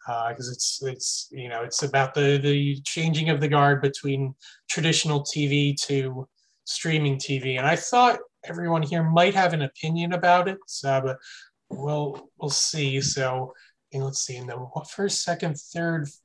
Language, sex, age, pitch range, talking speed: English, male, 20-39, 130-165 Hz, 165 wpm